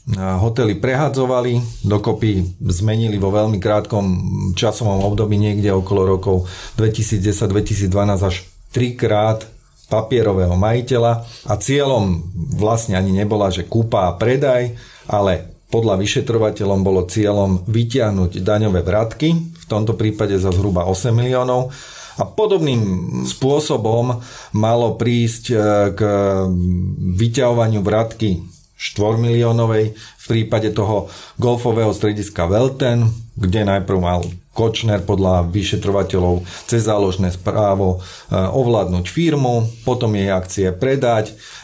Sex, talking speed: male, 105 wpm